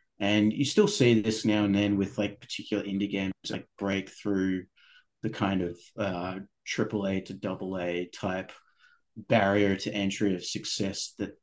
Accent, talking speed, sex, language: Australian, 160 wpm, male, English